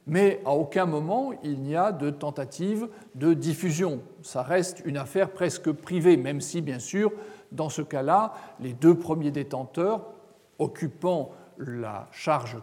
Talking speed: 145 wpm